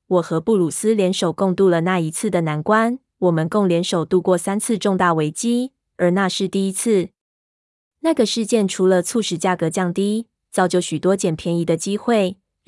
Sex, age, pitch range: female, 20-39, 170-210 Hz